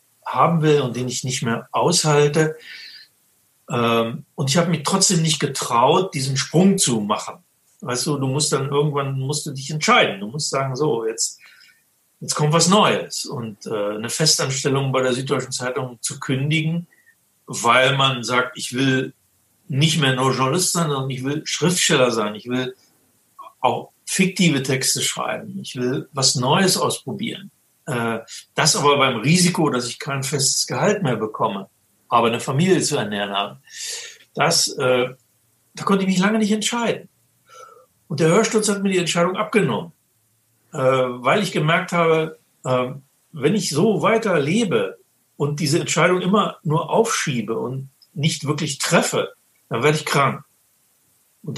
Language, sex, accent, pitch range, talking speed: German, male, German, 125-170 Hz, 150 wpm